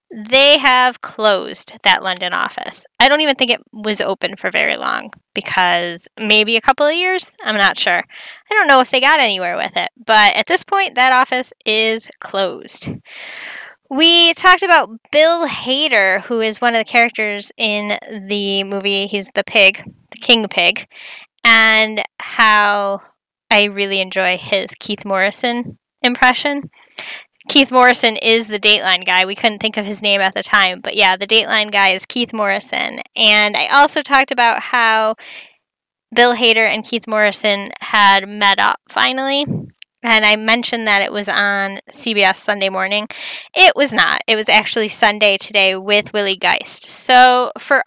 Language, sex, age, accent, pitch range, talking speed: English, female, 10-29, American, 205-255 Hz, 165 wpm